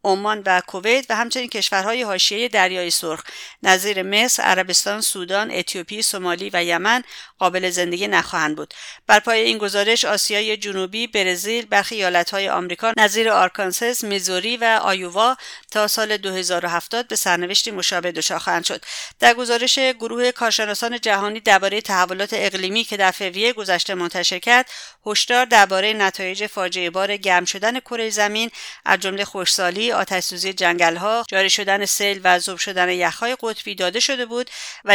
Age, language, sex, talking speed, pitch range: 50-69, English, female, 145 wpm, 185-225 Hz